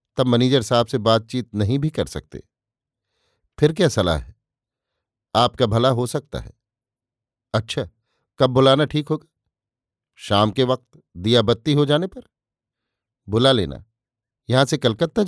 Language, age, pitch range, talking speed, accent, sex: Hindi, 50-69, 115-135 Hz, 140 wpm, native, male